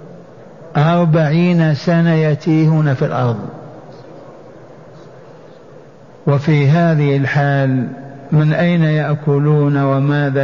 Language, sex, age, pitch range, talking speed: Arabic, male, 50-69, 140-165 Hz, 70 wpm